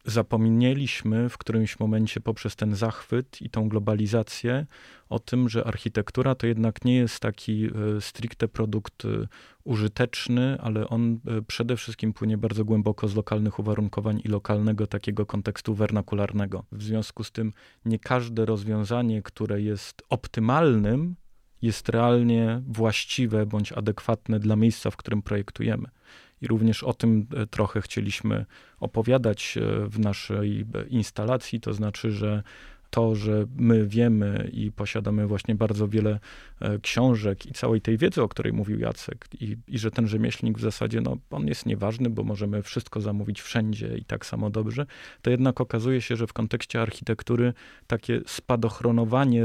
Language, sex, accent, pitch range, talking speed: Polish, male, native, 105-115 Hz, 145 wpm